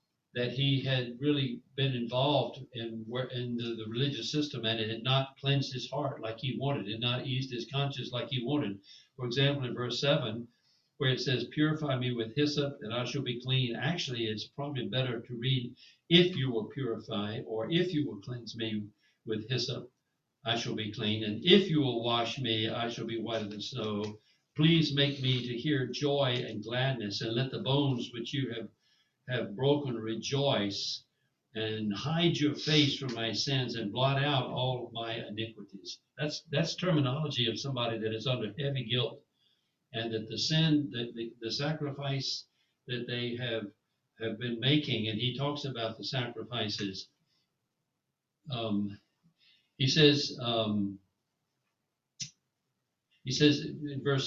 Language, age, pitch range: English, 60-79, 115-140 Hz